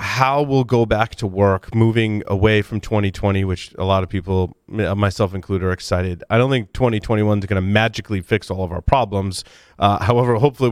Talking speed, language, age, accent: 195 wpm, English, 30-49, American